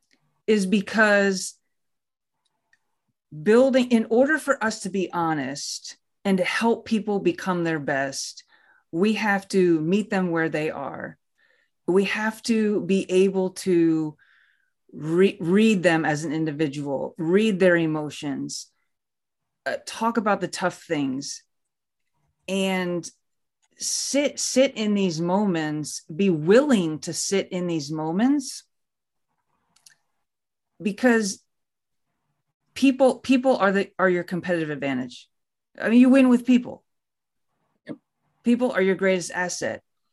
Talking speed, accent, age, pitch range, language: 120 wpm, American, 30-49, 170-230 Hz, English